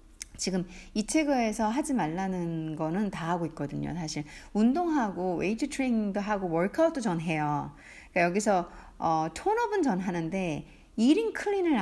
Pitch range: 160-260 Hz